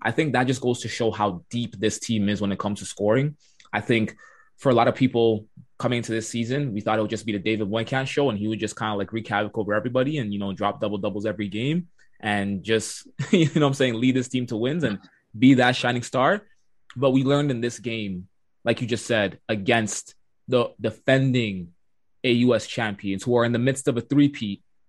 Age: 20-39